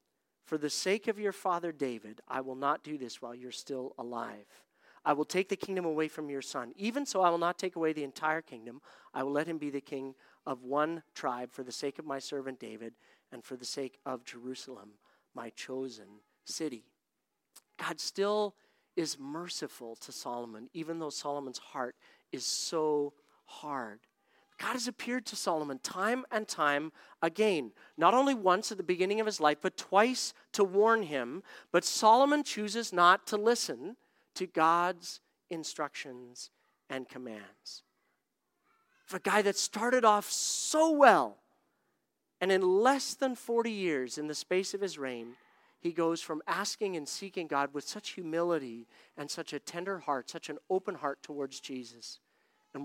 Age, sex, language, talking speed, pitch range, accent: 40-59, male, English, 170 wpm, 135-195 Hz, American